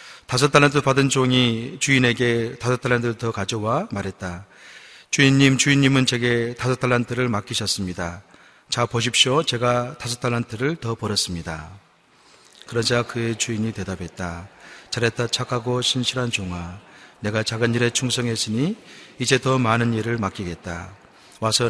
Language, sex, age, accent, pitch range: Korean, male, 40-59, native, 105-130 Hz